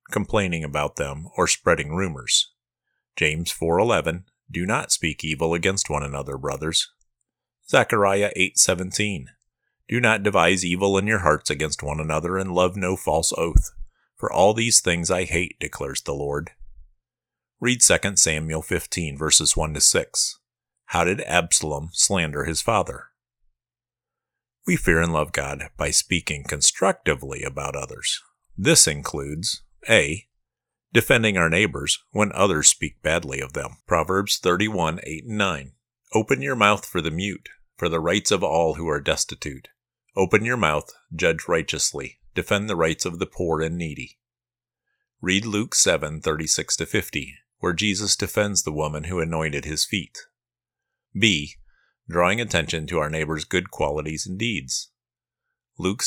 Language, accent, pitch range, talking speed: English, American, 75-100 Hz, 145 wpm